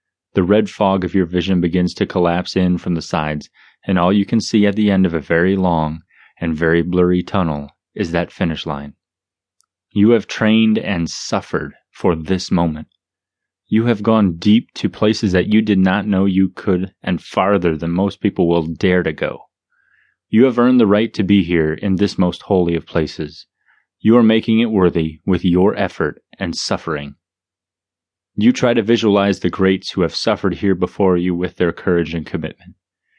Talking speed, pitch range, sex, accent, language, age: 190 wpm, 85-100 Hz, male, American, English, 30-49